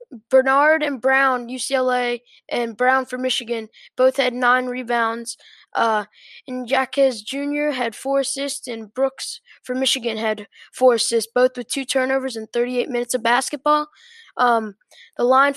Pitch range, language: 245-300 Hz, English